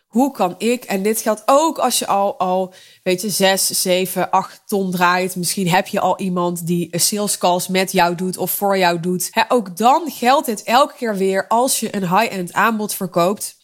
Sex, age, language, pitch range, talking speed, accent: female, 20-39, Dutch, 175-215 Hz, 205 wpm, Dutch